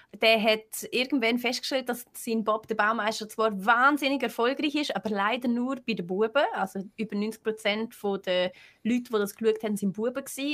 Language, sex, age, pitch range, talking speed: German, female, 20-39, 205-245 Hz, 170 wpm